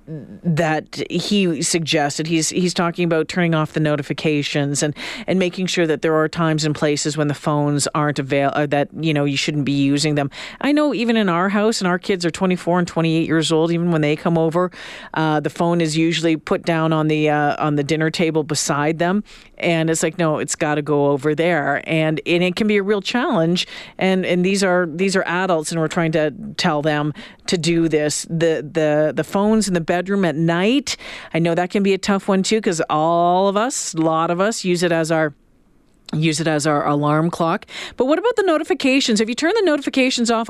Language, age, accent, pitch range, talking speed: English, 40-59, American, 155-200 Hz, 225 wpm